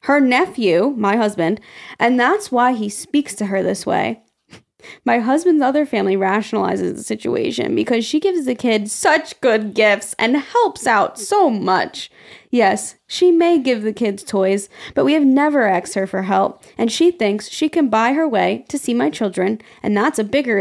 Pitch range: 205-280 Hz